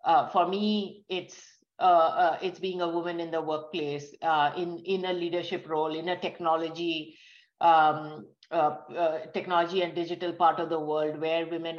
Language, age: English, 50-69